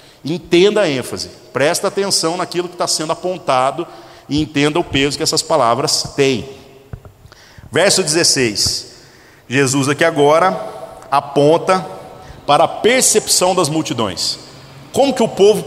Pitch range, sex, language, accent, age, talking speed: 130-180 Hz, male, Portuguese, Brazilian, 50-69, 125 wpm